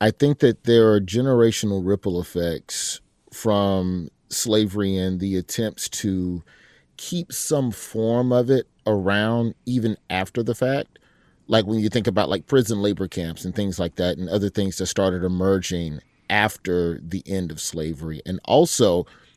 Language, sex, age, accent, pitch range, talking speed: English, male, 30-49, American, 95-135 Hz, 155 wpm